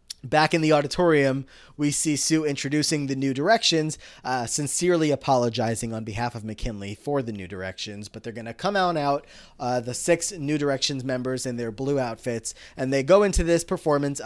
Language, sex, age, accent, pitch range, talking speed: English, male, 20-39, American, 120-150 Hz, 190 wpm